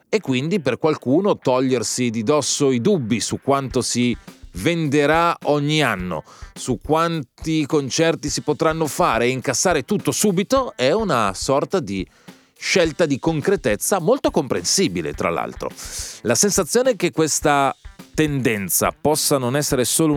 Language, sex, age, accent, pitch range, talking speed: Italian, male, 30-49, native, 115-160 Hz, 135 wpm